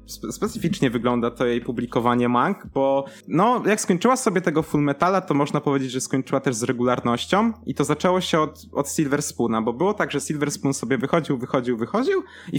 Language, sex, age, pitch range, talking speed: Polish, male, 20-39, 135-175 Hz, 195 wpm